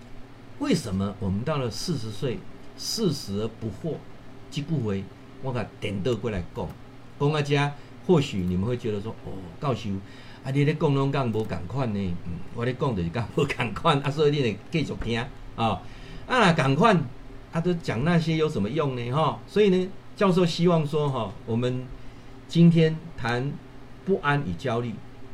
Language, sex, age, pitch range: Chinese, male, 50-69, 120-160 Hz